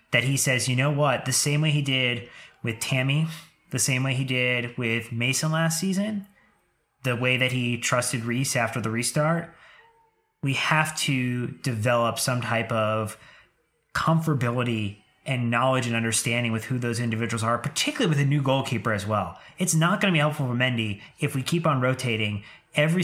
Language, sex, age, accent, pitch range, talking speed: English, male, 30-49, American, 115-145 Hz, 180 wpm